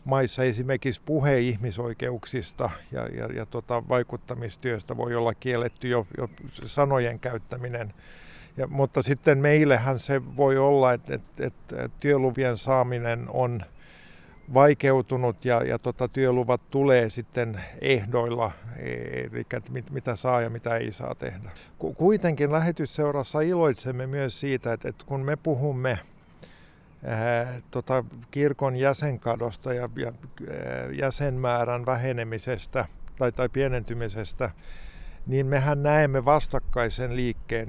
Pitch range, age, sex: 115-135 Hz, 50-69, male